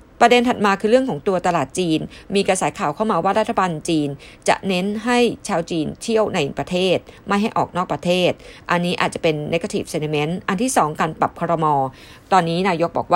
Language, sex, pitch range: Thai, female, 170-220 Hz